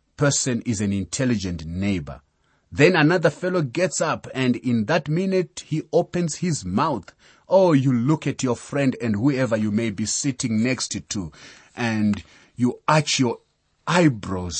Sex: male